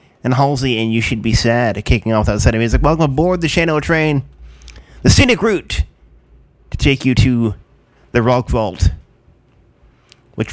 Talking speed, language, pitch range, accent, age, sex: 165 wpm, English, 120-155 Hz, American, 30-49, male